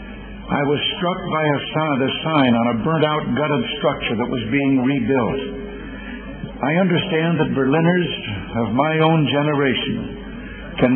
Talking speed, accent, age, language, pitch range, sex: 130 wpm, American, 60-79, English, 130-155 Hz, male